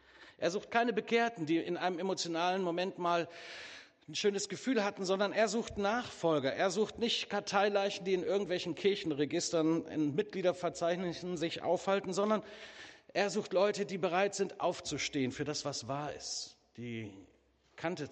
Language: German